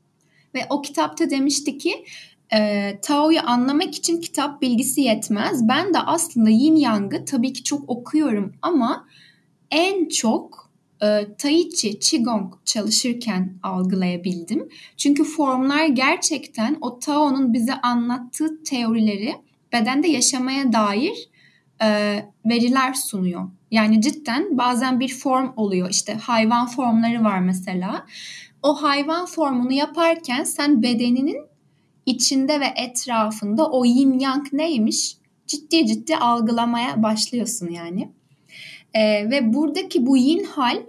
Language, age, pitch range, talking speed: Turkish, 10-29, 220-290 Hz, 115 wpm